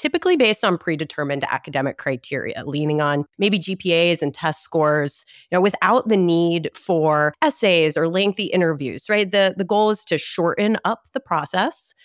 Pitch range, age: 155-220 Hz, 30-49